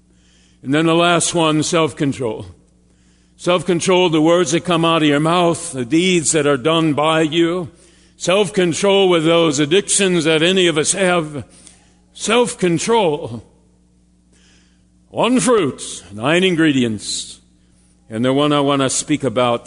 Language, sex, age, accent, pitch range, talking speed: English, male, 60-79, American, 105-180 Hz, 135 wpm